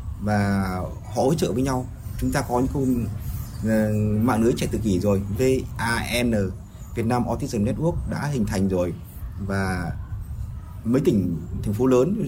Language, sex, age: Vietnamese, male, 20-39